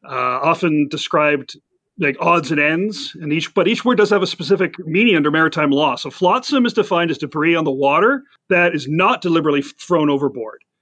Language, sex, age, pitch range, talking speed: English, male, 40-59, 140-175 Hz, 195 wpm